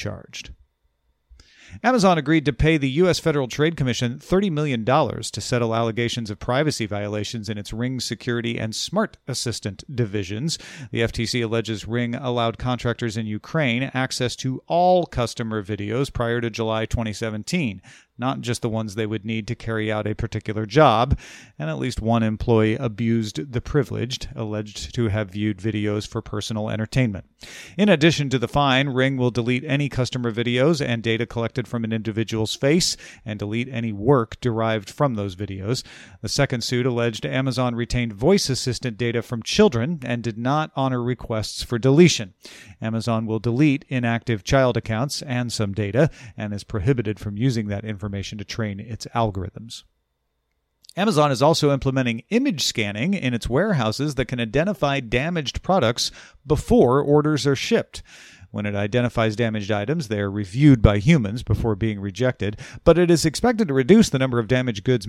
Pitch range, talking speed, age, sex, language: 110-135 Hz, 165 wpm, 40-59, male, English